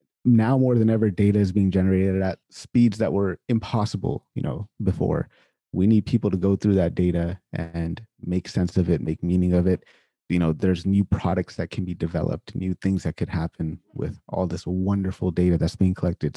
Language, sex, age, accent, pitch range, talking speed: English, male, 30-49, American, 90-105 Hz, 200 wpm